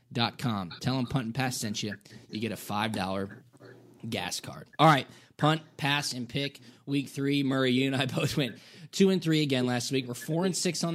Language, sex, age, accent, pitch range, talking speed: English, male, 20-39, American, 125-150 Hz, 220 wpm